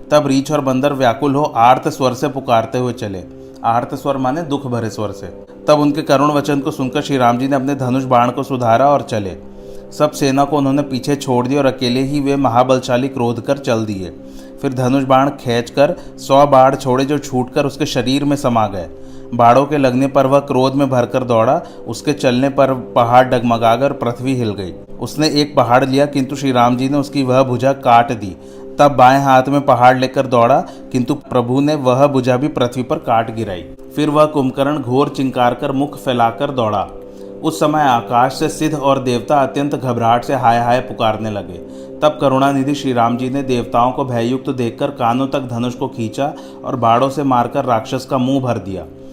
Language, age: Hindi, 30-49